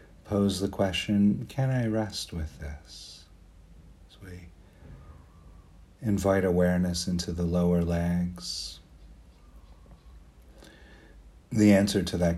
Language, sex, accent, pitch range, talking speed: English, male, American, 80-100 Hz, 95 wpm